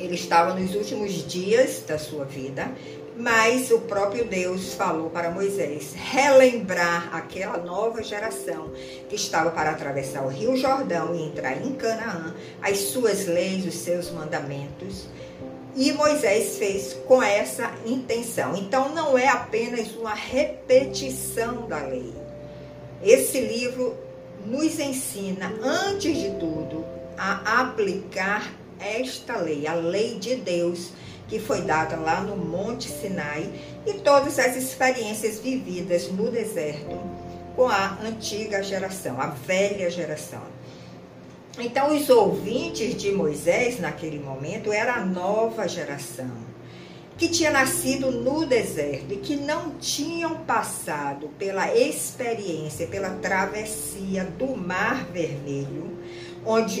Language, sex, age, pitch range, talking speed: Portuguese, female, 60-79, 170-250 Hz, 120 wpm